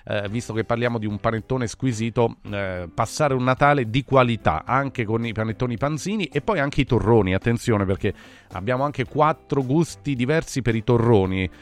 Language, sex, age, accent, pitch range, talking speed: Italian, male, 30-49, native, 110-145 Hz, 175 wpm